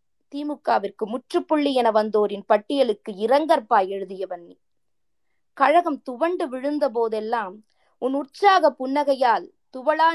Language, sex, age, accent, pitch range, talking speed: Tamil, female, 20-39, native, 220-300 Hz, 90 wpm